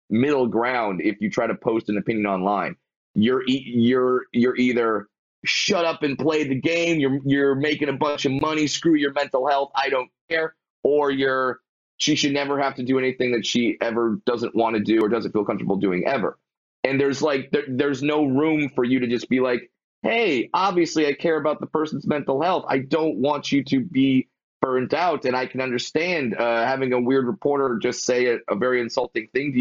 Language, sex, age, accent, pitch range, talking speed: English, male, 30-49, American, 120-140 Hz, 205 wpm